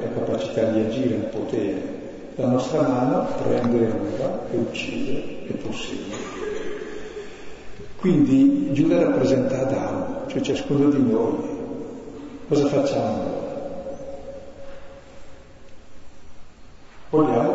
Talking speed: 90 wpm